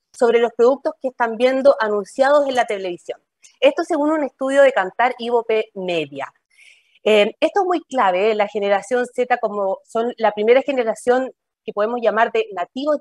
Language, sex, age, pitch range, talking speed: Spanish, female, 30-49, 210-260 Hz, 175 wpm